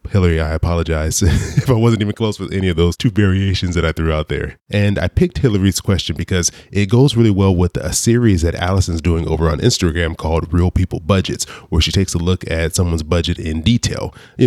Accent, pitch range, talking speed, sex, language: American, 85-105 Hz, 220 wpm, male, English